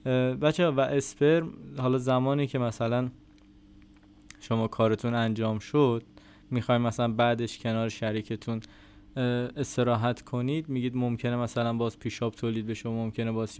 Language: Persian